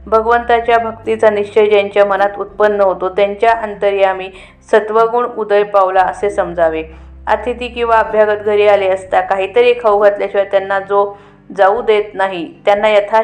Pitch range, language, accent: 195-225 Hz, Marathi, native